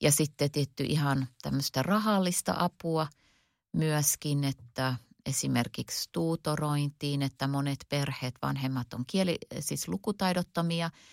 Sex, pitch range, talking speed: female, 130-150 Hz, 100 wpm